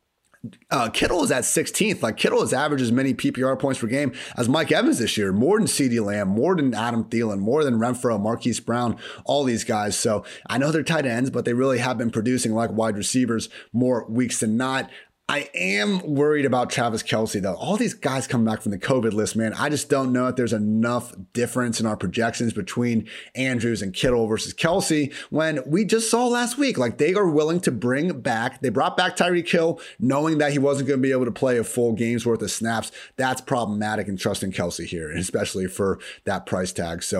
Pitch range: 110-130 Hz